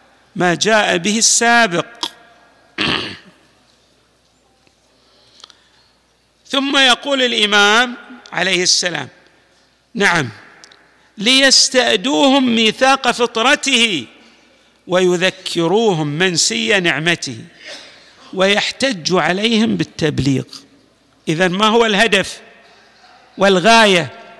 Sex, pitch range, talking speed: male, 185-240 Hz, 60 wpm